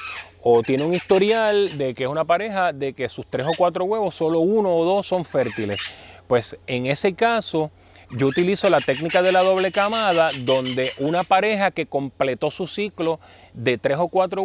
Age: 30-49